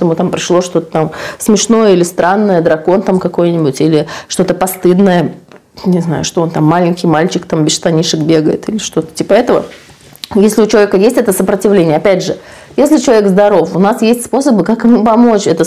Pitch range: 170-225 Hz